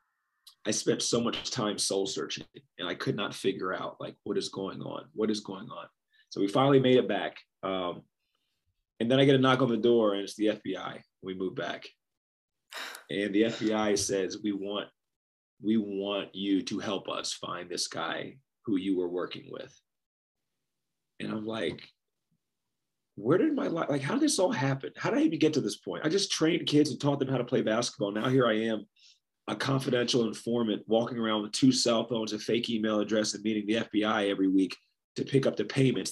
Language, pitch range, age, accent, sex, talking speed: English, 105-135 Hz, 30-49, American, male, 210 wpm